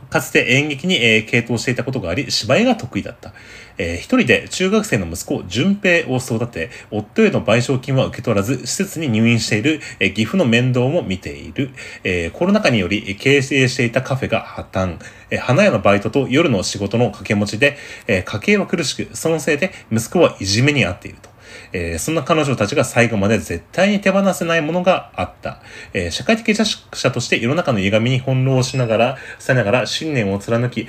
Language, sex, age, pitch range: Japanese, male, 30-49, 100-135 Hz